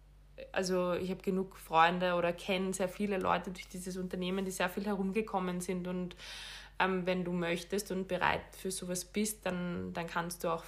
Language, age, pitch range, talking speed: German, 20-39, 175-195 Hz, 185 wpm